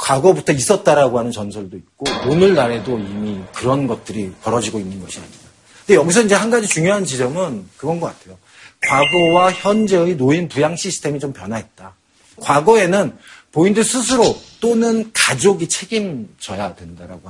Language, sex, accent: Korean, male, native